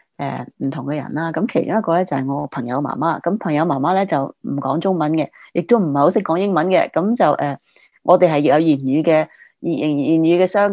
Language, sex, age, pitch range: Chinese, female, 30-49, 145-190 Hz